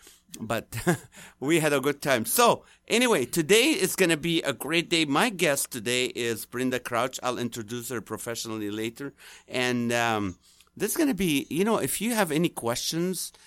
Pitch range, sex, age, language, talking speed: 120-160 Hz, male, 50-69, English, 175 wpm